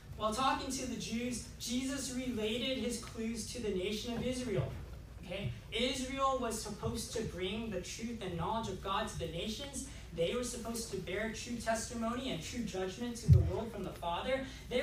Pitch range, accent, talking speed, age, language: 180-255 Hz, American, 185 wpm, 20-39, English